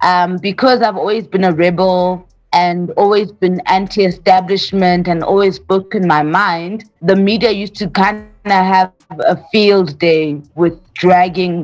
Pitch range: 180-215 Hz